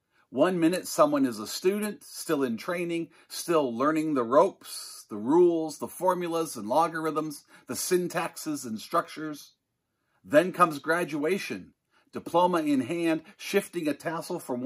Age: 50-69